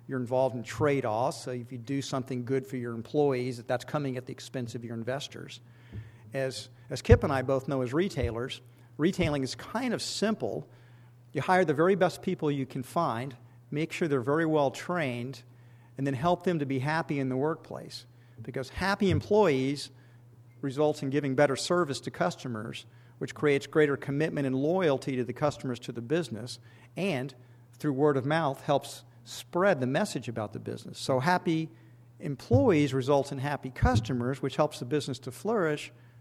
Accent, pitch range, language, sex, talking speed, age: American, 120-150 Hz, English, male, 180 wpm, 50-69